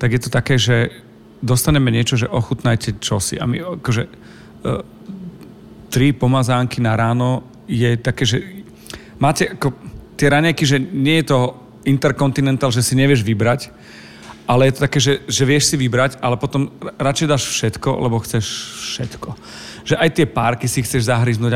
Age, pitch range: 40-59, 120-140 Hz